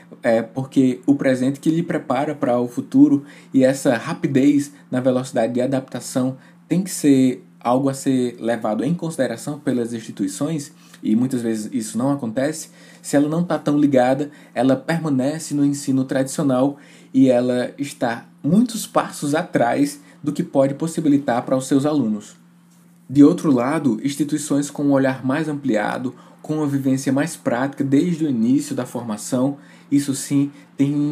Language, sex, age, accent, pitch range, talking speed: Portuguese, male, 20-39, Brazilian, 130-160 Hz, 155 wpm